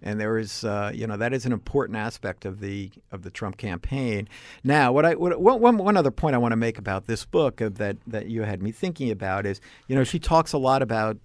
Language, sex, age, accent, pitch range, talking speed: English, male, 50-69, American, 110-135 Hz, 250 wpm